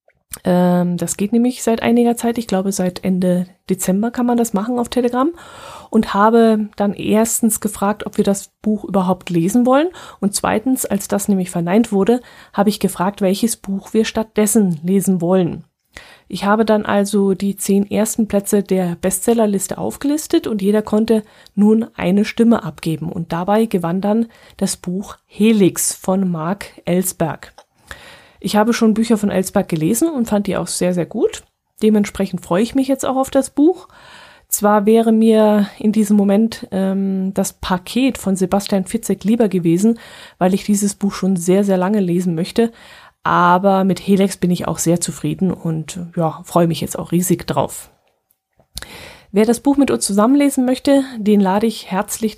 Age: 30-49